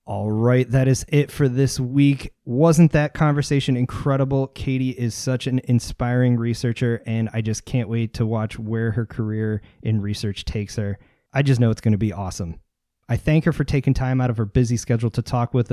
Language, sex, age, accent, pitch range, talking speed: English, male, 20-39, American, 110-130 Hz, 205 wpm